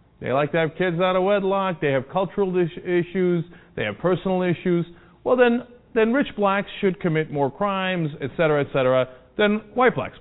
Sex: male